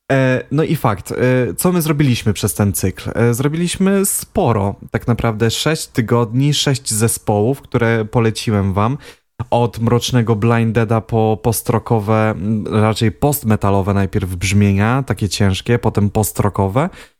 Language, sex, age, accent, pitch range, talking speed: Polish, male, 20-39, native, 105-120 Hz, 115 wpm